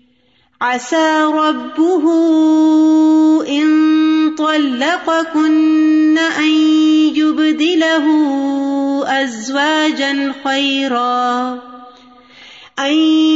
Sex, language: female, Urdu